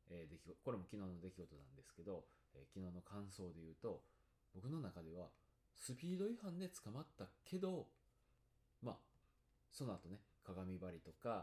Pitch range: 80-115 Hz